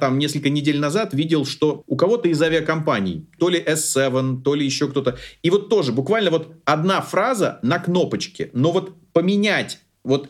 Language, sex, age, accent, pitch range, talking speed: Russian, male, 30-49, native, 125-165 Hz, 170 wpm